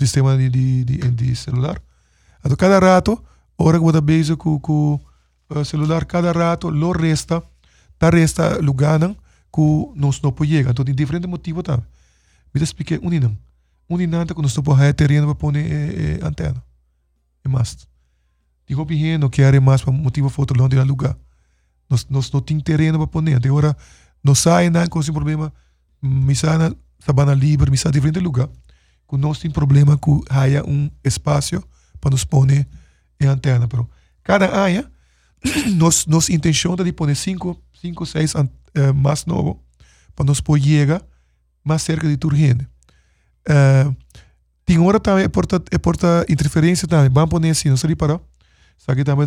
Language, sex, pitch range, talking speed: English, male, 130-160 Hz, 175 wpm